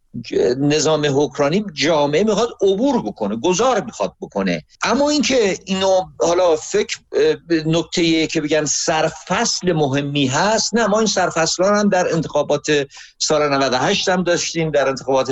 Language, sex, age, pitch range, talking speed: Persian, male, 50-69, 145-225 Hz, 135 wpm